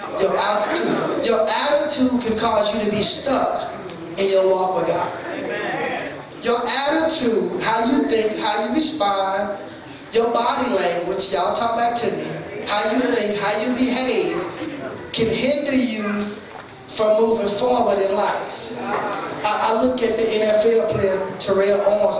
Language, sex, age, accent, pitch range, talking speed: English, male, 20-39, American, 205-255 Hz, 140 wpm